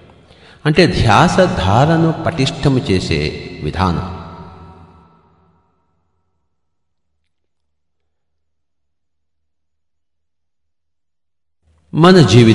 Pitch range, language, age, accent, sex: 85-125 Hz, English, 50-69, Indian, male